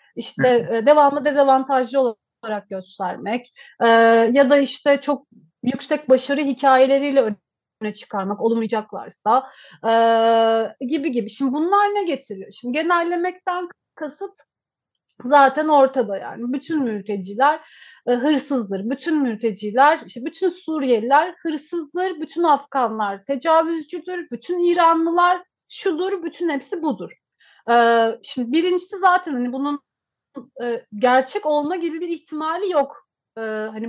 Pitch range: 240-320 Hz